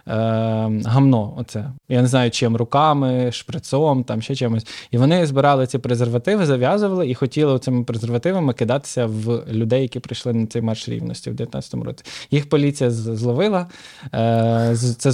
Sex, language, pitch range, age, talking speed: male, Ukrainian, 120-140 Hz, 20-39, 145 wpm